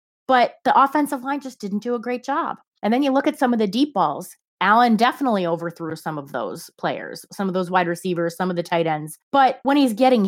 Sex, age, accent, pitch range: female, 30-49, American, 185-255 Hz